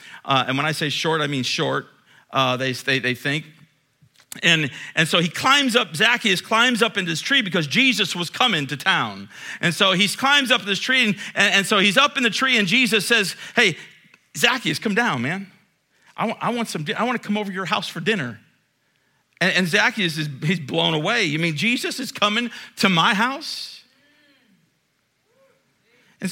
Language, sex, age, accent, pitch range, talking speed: English, male, 50-69, American, 160-245 Hz, 195 wpm